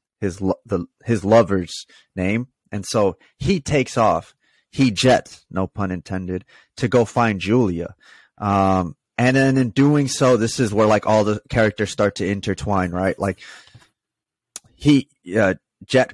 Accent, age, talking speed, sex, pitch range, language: American, 30-49, 150 wpm, male, 100-130 Hz, English